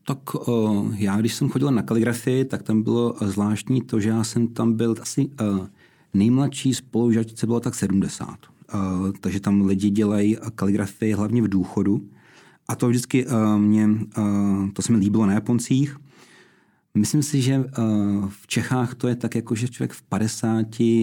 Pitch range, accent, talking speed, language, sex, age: 100-120 Hz, native, 170 wpm, Czech, male, 40-59